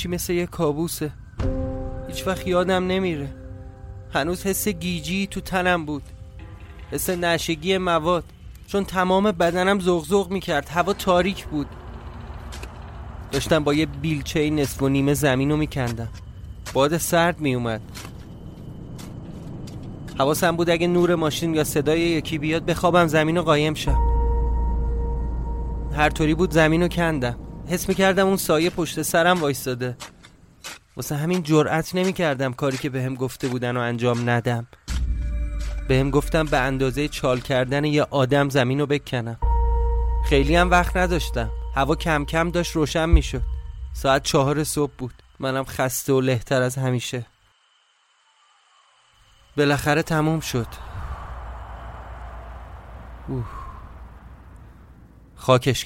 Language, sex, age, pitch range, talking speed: Persian, male, 30-49, 100-165 Hz, 120 wpm